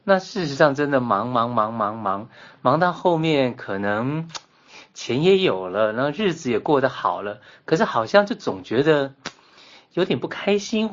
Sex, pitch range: male, 120-160 Hz